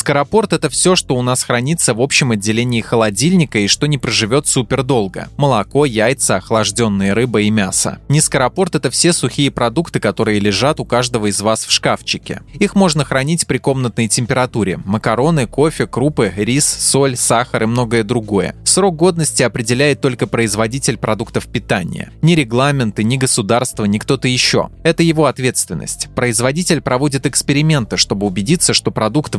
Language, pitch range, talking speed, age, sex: Russian, 115-145 Hz, 155 wpm, 20-39, male